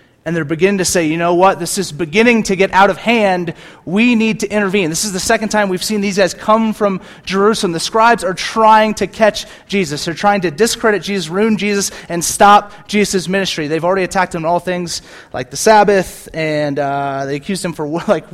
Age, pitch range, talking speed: 30-49, 175-220 Hz, 220 wpm